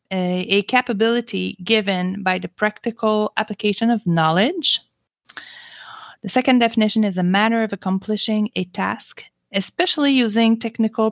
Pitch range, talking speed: 185-225 Hz, 125 wpm